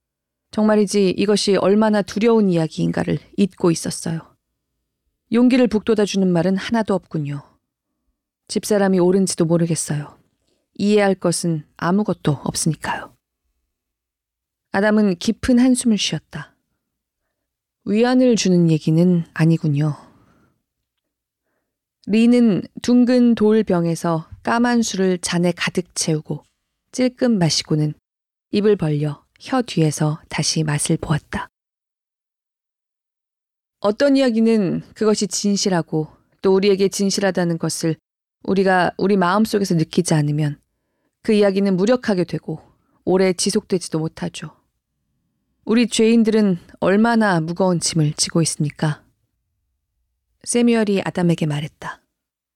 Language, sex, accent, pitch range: Korean, female, native, 155-210 Hz